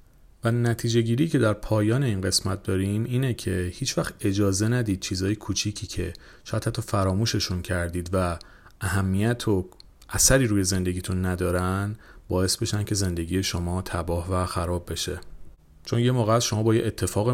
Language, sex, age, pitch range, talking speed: Persian, male, 40-59, 90-115 Hz, 155 wpm